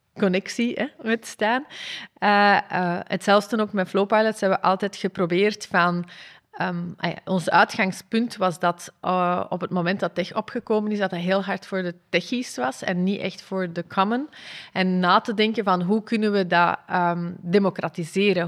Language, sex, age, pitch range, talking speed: Dutch, female, 30-49, 180-210 Hz, 170 wpm